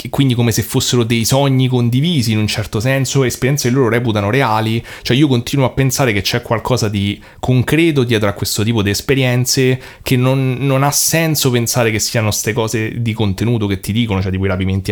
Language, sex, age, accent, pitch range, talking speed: Italian, male, 30-49, native, 105-125 Hz, 205 wpm